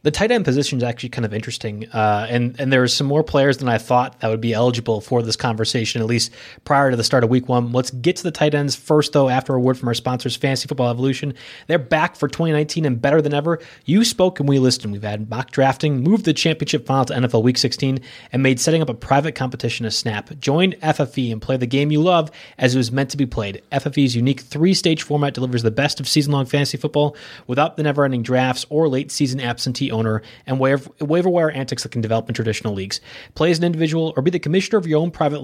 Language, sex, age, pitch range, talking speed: English, male, 30-49, 125-160 Hz, 240 wpm